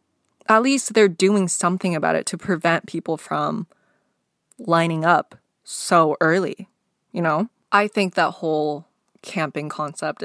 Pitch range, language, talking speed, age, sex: 175-220 Hz, English, 135 wpm, 20-39, female